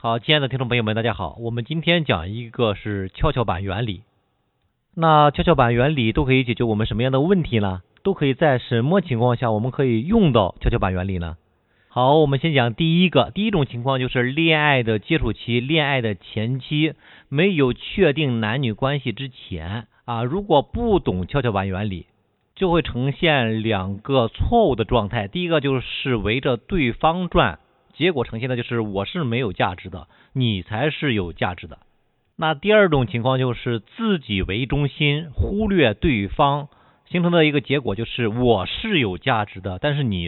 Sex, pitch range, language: male, 105-150 Hz, Chinese